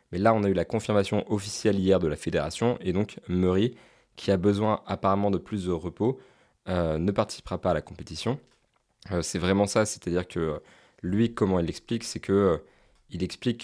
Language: French